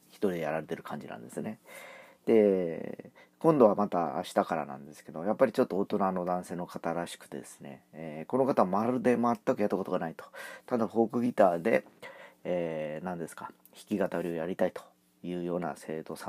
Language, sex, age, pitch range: Japanese, male, 40-59, 85-110 Hz